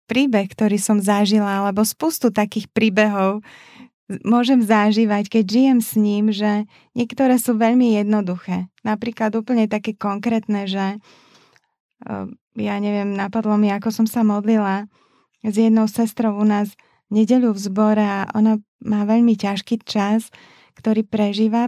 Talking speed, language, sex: 135 wpm, Slovak, female